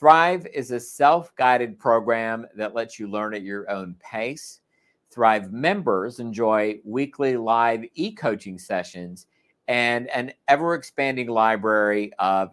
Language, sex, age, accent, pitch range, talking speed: English, male, 50-69, American, 110-140 Hz, 135 wpm